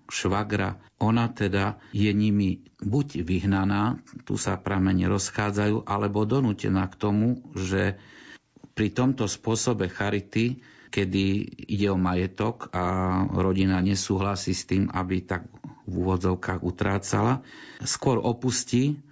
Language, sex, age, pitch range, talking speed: Slovak, male, 50-69, 95-105 Hz, 115 wpm